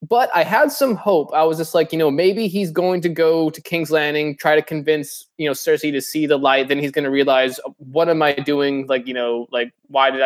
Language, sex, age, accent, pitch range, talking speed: English, male, 20-39, American, 140-180 Hz, 255 wpm